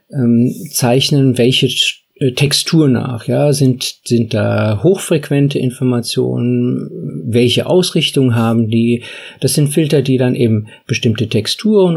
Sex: male